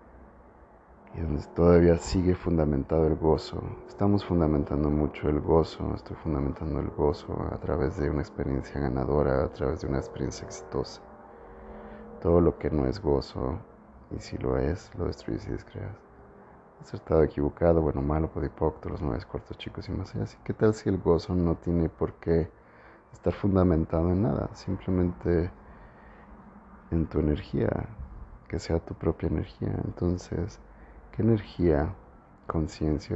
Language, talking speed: Spanish, 145 wpm